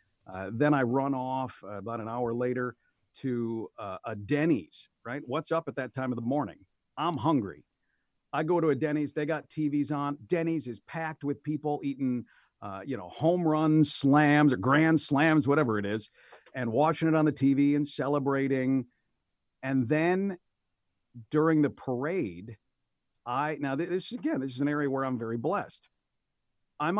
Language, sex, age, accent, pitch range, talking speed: English, male, 50-69, American, 110-150 Hz, 175 wpm